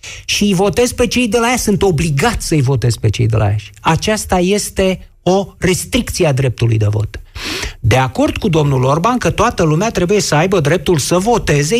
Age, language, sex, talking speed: 50-69, Romanian, male, 200 wpm